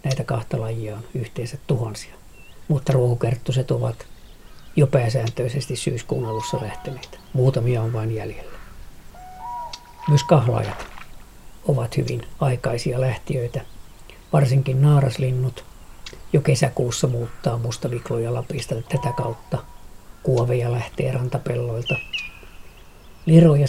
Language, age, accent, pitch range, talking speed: Finnish, 50-69, native, 115-135 Hz, 90 wpm